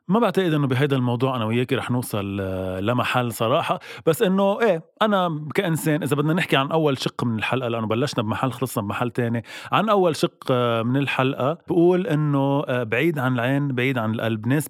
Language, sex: Arabic, male